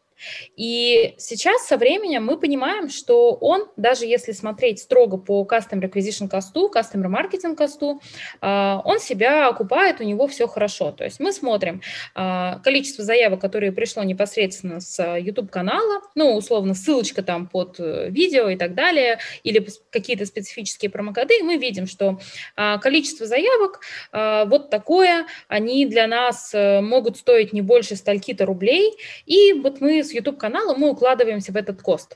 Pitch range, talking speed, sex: 210-290 Hz, 140 wpm, female